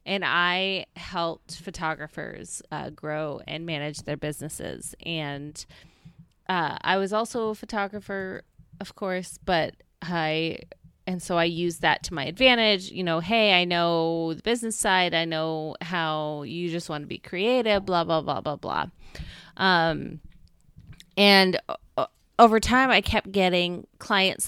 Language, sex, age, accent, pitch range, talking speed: English, female, 20-39, American, 160-195 Hz, 145 wpm